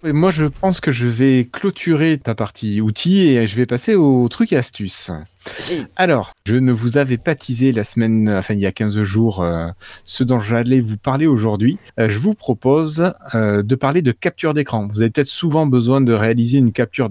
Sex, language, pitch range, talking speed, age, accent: male, French, 110-135 Hz, 210 wpm, 30-49, French